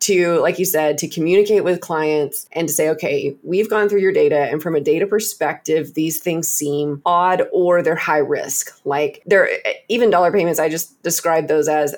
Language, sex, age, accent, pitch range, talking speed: English, female, 20-39, American, 150-205 Hz, 200 wpm